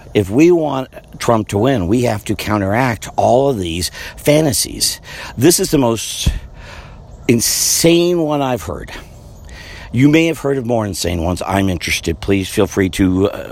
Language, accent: English, American